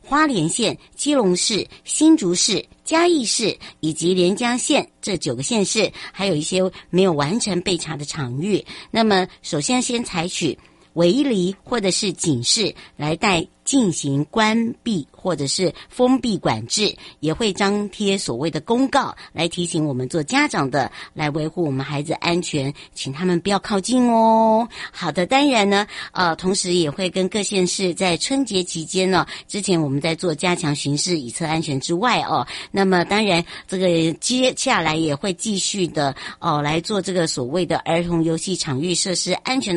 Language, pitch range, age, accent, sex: Chinese, 165-205 Hz, 60-79, American, male